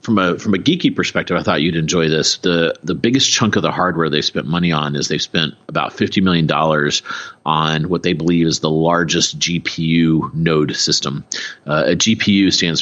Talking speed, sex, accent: 200 wpm, male, American